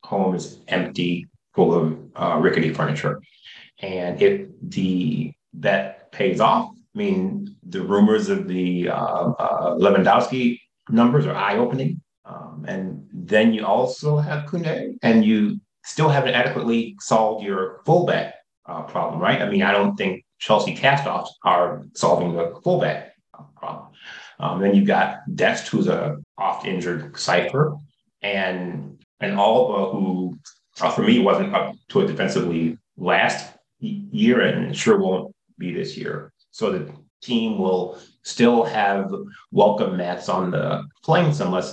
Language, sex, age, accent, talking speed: English, male, 30-49, American, 140 wpm